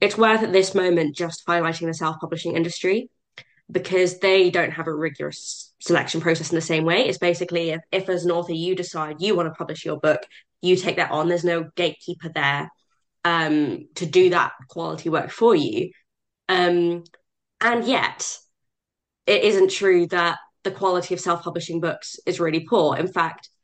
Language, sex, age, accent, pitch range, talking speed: English, female, 20-39, British, 165-185 Hz, 180 wpm